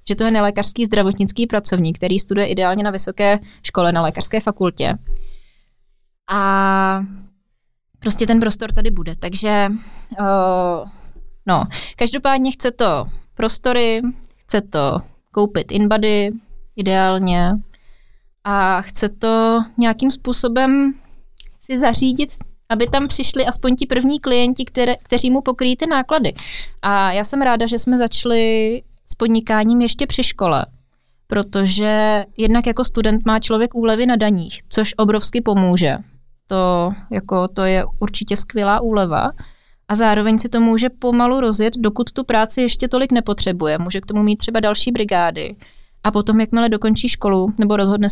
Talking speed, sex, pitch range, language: 135 wpm, female, 200-240 Hz, Czech